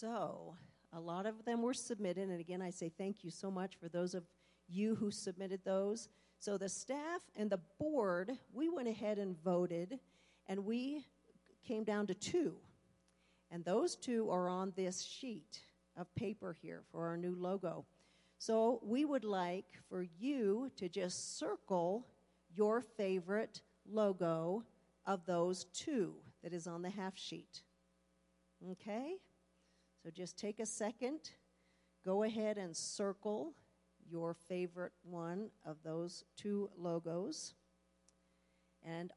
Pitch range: 160-205 Hz